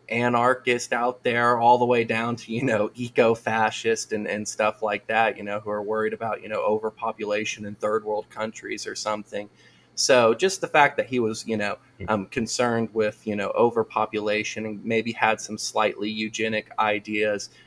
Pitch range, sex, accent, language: 105-120 Hz, male, American, English